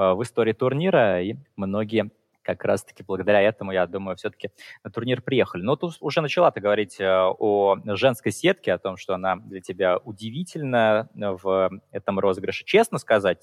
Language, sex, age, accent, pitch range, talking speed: Russian, male, 20-39, native, 100-135 Hz, 160 wpm